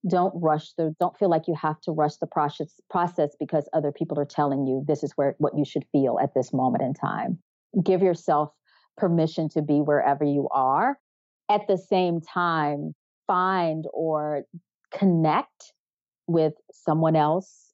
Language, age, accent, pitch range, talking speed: English, 40-59, American, 145-175 Hz, 165 wpm